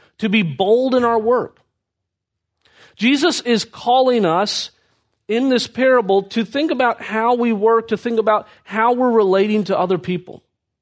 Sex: male